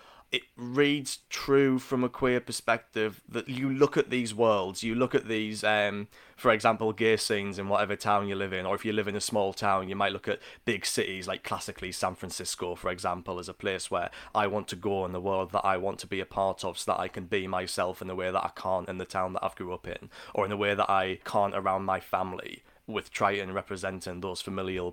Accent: British